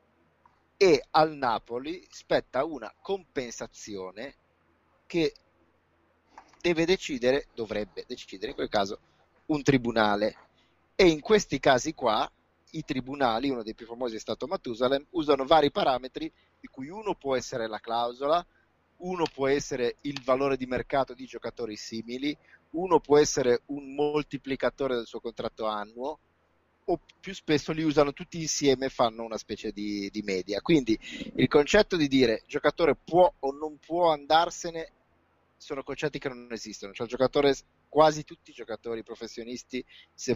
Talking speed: 145 wpm